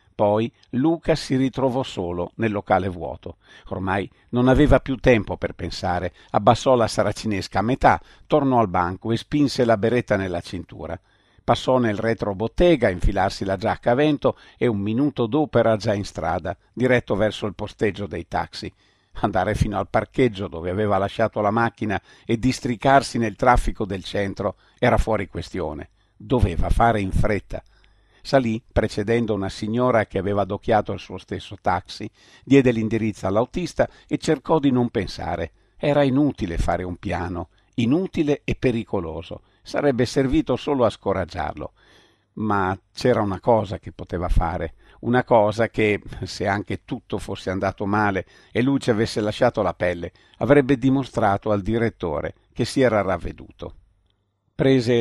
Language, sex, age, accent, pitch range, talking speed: Italian, male, 50-69, native, 95-125 Hz, 150 wpm